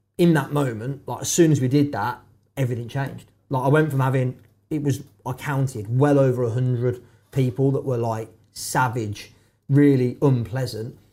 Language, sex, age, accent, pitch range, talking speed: English, male, 30-49, British, 115-140 Hz, 175 wpm